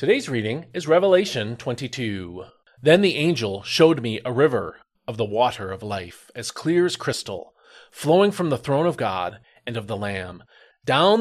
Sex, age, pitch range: male, 40-59, 115-160 Hz